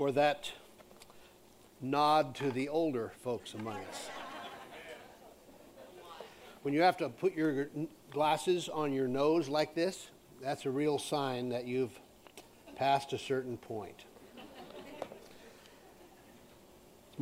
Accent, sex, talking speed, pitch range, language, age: American, male, 110 wpm, 125-150 Hz, English, 50-69